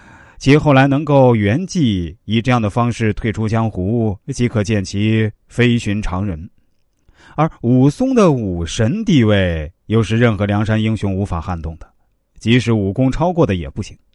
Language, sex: Chinese, male